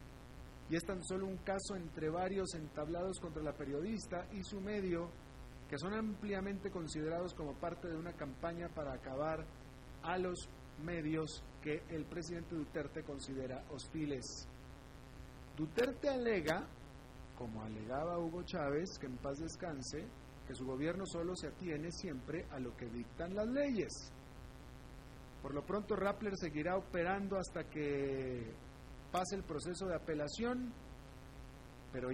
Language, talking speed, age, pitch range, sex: Spanish, 135 wpm, 40-59, 140-190 Hz, male